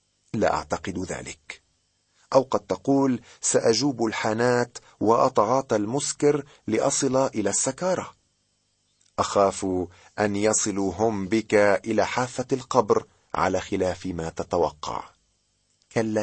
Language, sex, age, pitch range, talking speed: Arabic, male, 40-59, 90-130 Hz, 90 wpm